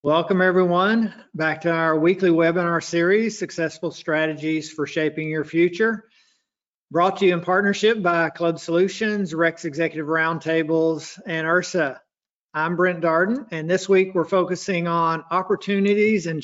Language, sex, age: English, male, 50-69